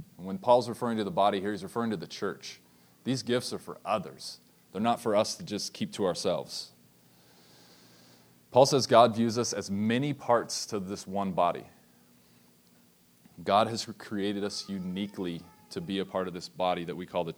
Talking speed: 190 wpm